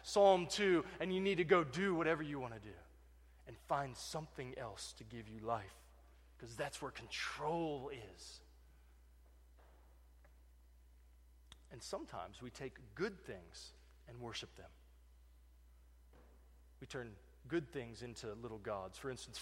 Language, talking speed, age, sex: English, 135 wpm, 20-39, male